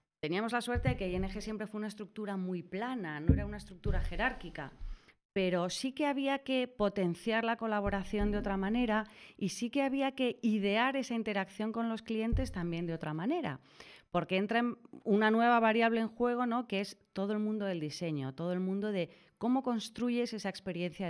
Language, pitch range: Spanish, 180-230 Hz